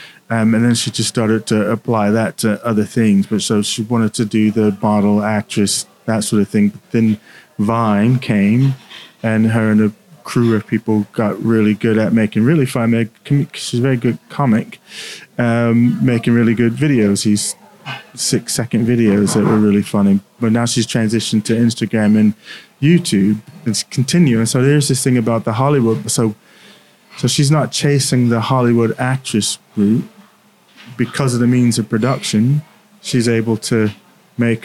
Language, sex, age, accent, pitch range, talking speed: English, male, 30-49, British, 110-130 Hz, 165 wpm